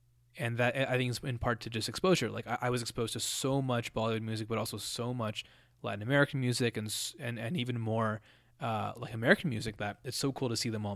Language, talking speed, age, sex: English, 240 wpm, 20-39, male